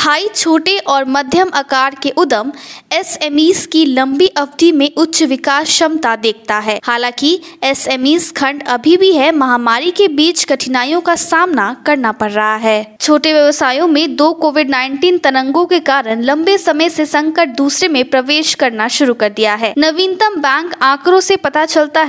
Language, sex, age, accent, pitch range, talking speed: Hindi, female, 20-39, native, 265-335 Hz, 160 wpm